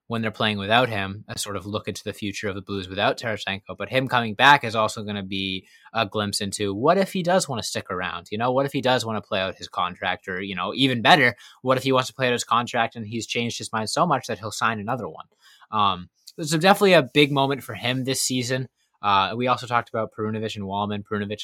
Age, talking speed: 20-39, 265 wpm